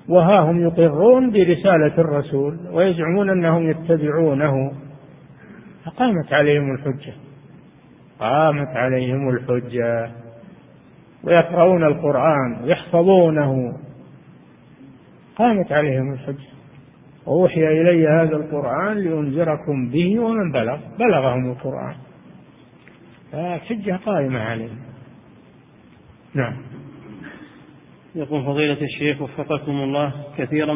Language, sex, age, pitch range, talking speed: Arabic, male, 50-69, 140-155 Hz, 80 wpm